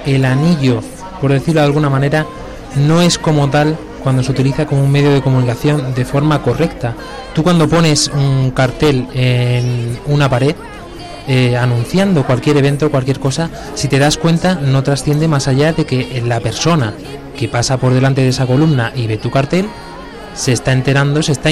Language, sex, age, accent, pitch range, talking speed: Spanish, male, 20-39, Spanish, 125-150 Hz, 180 wpm